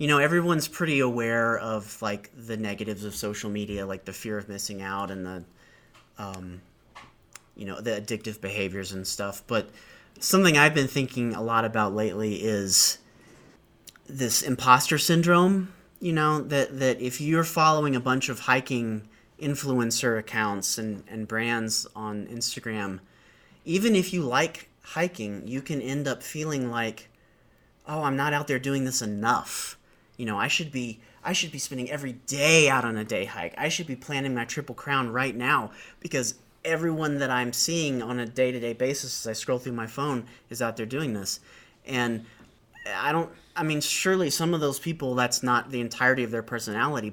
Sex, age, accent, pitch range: male, 30-49, American, 105-140 Hz